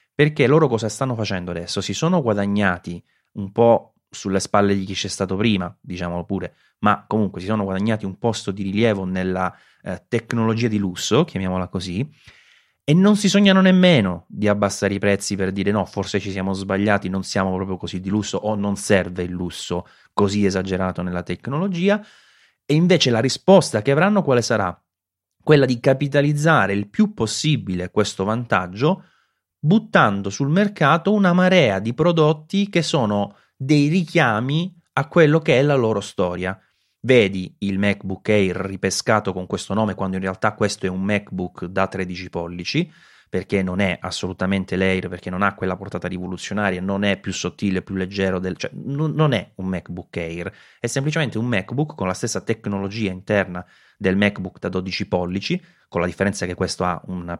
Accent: native